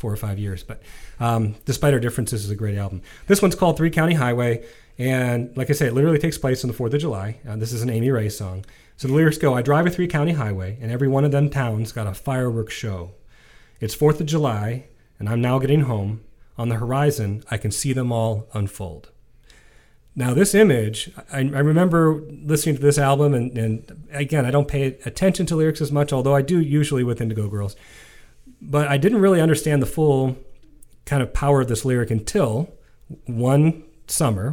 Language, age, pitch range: English, 40-59, 110-145 Hz